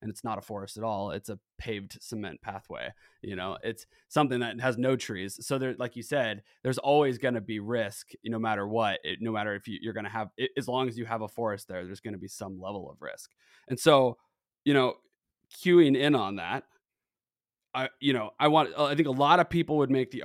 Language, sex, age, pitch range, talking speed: English, male, 20-39, 110-140 Hz, 250 wpm